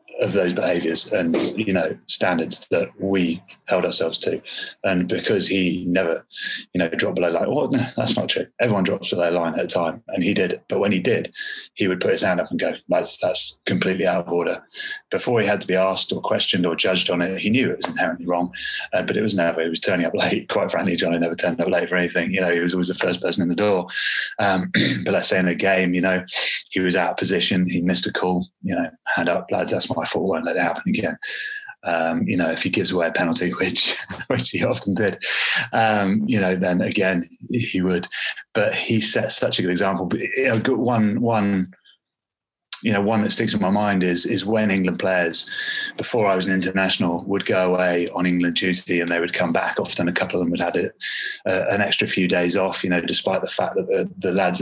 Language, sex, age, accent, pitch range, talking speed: English, male, 20-39, British, 90-110 Hz, 240 wpm